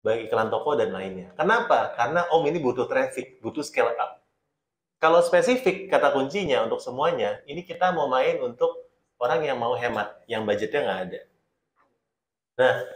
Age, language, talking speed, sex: 30-49, Indonesian, 155 wpm, male